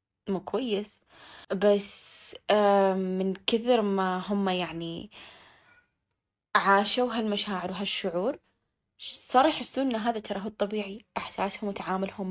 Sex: female